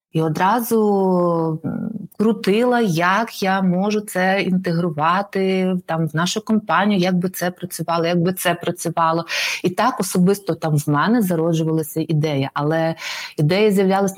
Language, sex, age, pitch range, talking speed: Ukrainian, female, 30-49, 170-210 Hz, 130 wpm